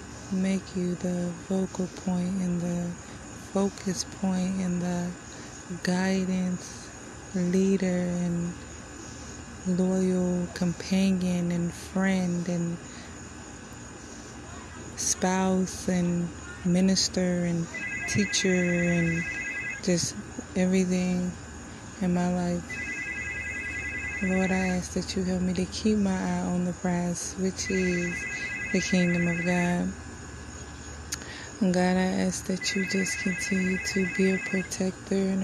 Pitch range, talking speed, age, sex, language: 175-185 Hz, 105 wpm, 20-39, female, English